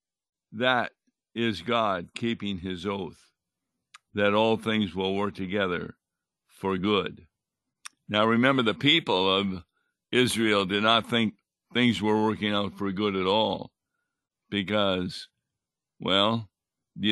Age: 60-79